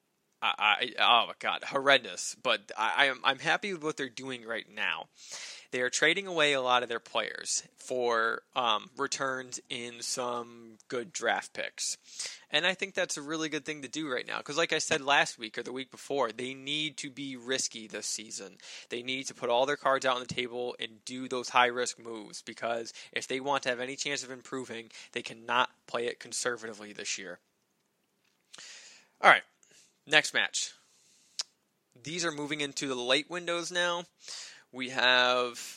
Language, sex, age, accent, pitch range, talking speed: English, male, 20-39, American, 125-160 Hz, 180 wpm